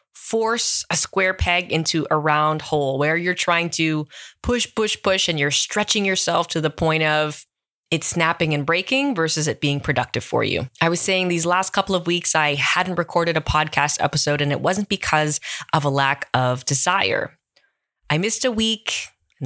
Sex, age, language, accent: female, 20-39, English, American